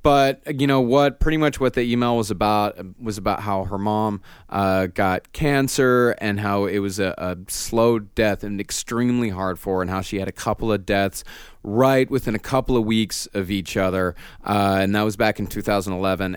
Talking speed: 205 wpm